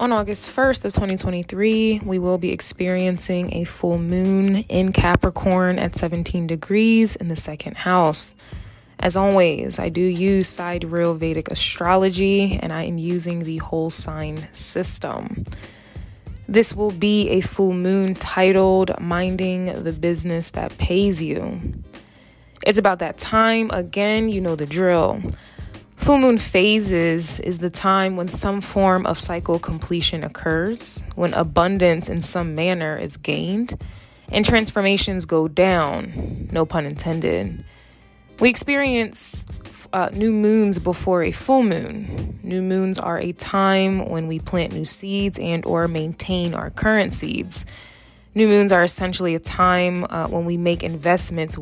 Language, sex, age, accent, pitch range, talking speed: English, female, 20-39, American, 165-195 Hz, 145 wpm